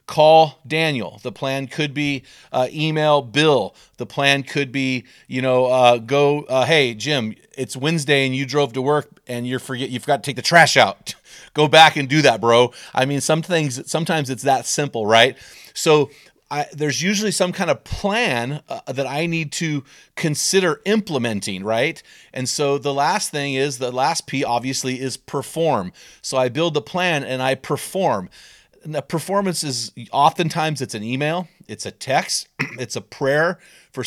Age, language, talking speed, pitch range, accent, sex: 30-49, English, 180 wpm, 125-155 Hz, American, male